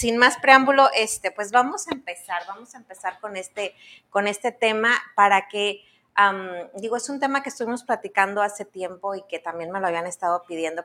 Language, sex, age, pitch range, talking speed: Spanish, female, 30-49, 180-225 Hz, 200 wpm